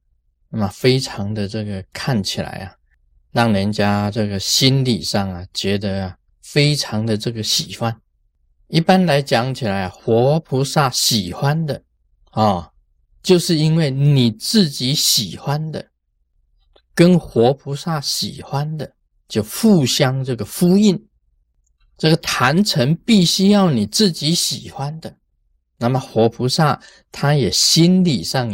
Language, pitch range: Chinese, 100-150 Hz